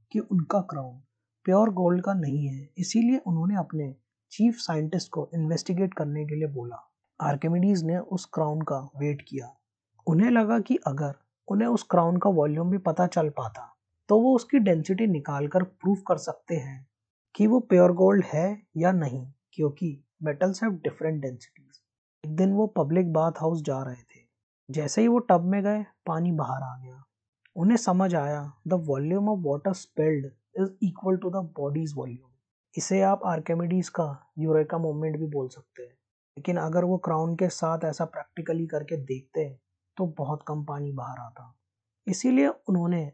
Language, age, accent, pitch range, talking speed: Hindi, 20-39, native, 140-185 Hz, 165 wpm